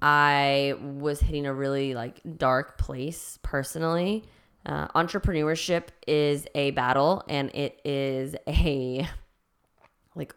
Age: 10-29